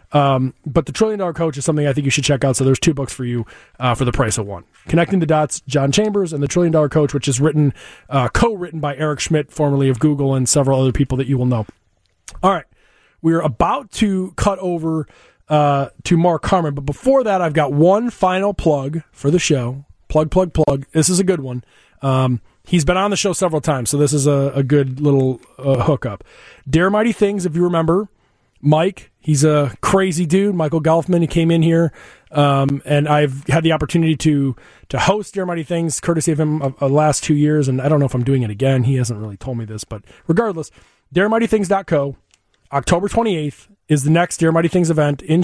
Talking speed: 220 wpm